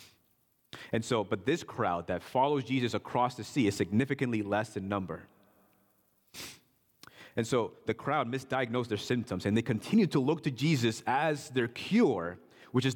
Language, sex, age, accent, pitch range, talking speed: English, male, 30-49, American, 105-130 Hz, 160 wpm